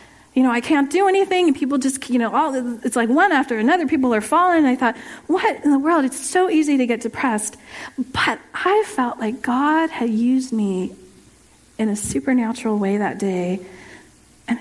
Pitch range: 220-275 Hz